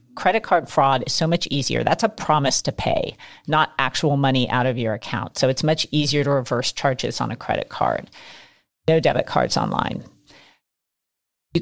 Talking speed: 180 wpm